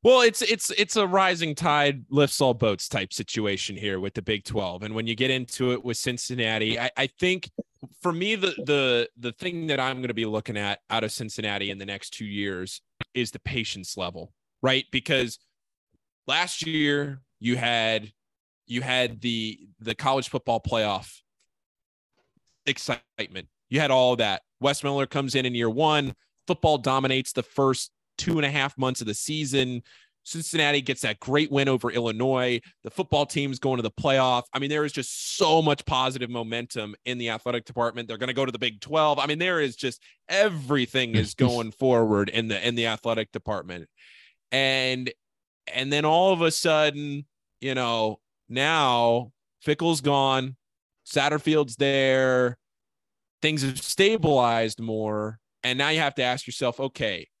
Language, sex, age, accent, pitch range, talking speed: English, male, 20-39, American, 115-145 Hz, 175 wpm